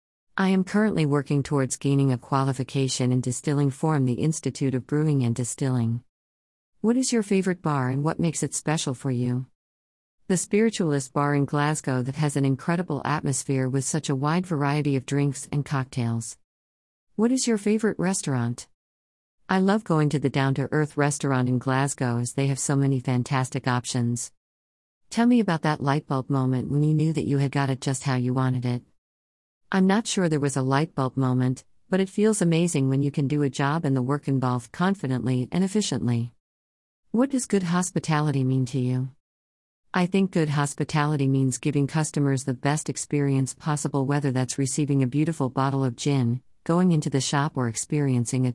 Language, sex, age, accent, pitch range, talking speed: English, female, 50-69, American, 125-155 Hz, 180 wpm